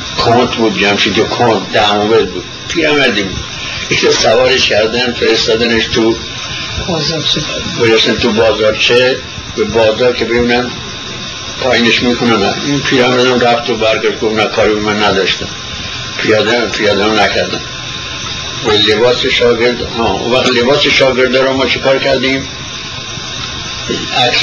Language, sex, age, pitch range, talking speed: Persian, male, 60-79, 110-130 Hz, 135 wpm